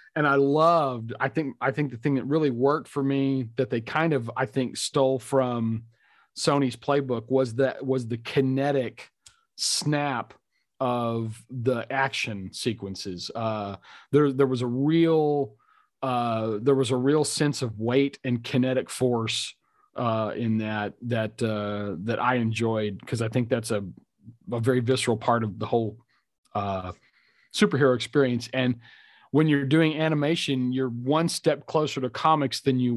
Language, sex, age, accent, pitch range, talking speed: English, male, 40-59, American, 115-140 Hz, 160 wpm